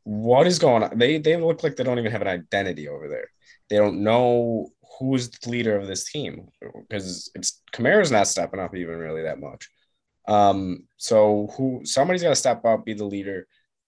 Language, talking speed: English, 200 wpm